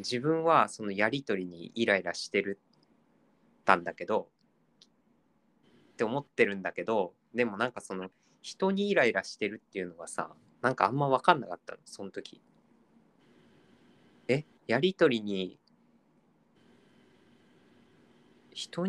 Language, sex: Japanese, male